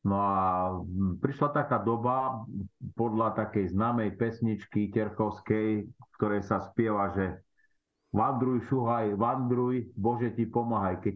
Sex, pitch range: male, 100-115 Hz